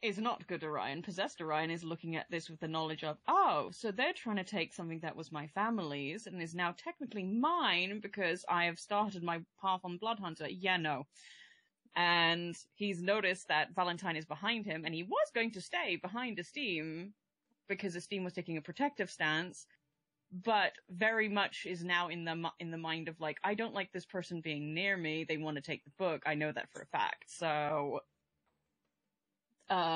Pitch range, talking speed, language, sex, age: 160-195 Hz, 190 wpm, English, female, 20-39